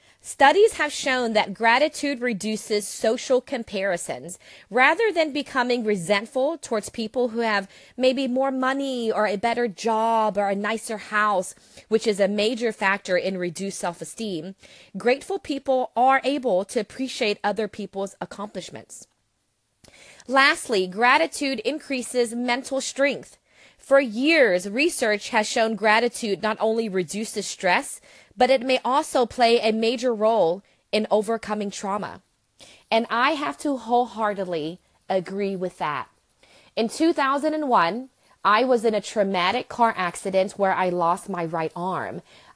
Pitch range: 195-250 Hz